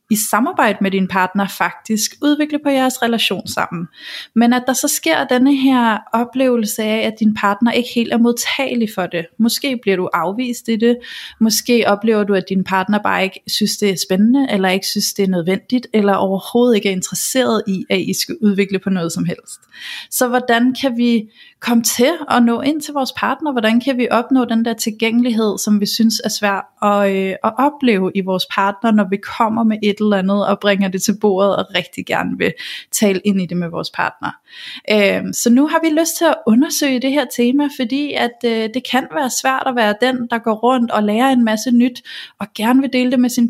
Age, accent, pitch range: 30-49, native, 200-255 Hz